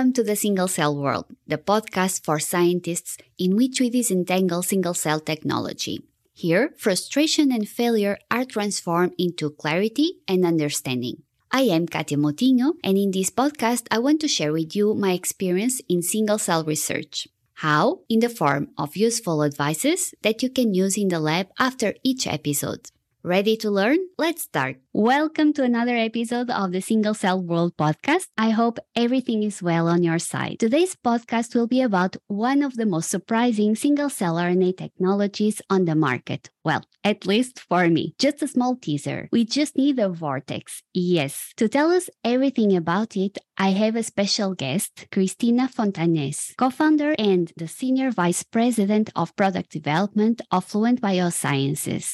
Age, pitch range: 20-39, 175-245 Hz